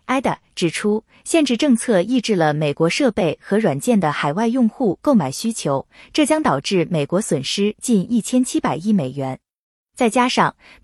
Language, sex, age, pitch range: Chinese, female, 20-39, 160-245 Hz